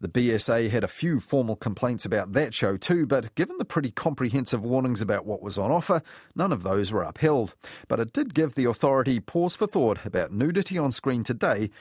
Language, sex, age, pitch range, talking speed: English, male, 30-49, 110-145 Hz, 210 wpm